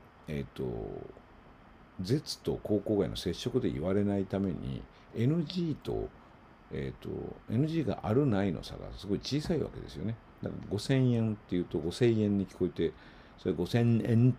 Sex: male